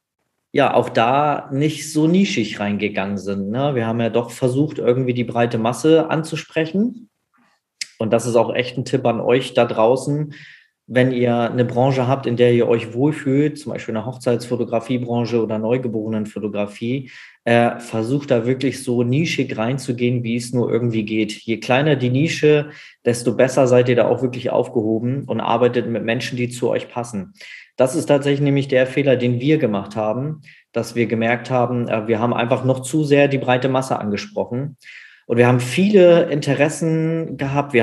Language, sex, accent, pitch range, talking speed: German, male, German, 120-140 Hz, 170 wpm